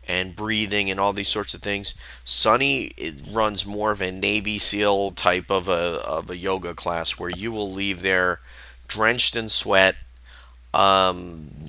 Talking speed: 160 wpm